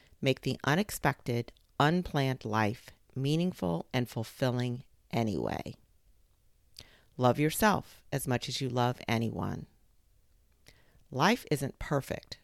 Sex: female